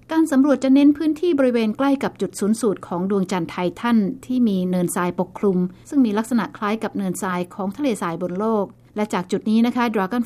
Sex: female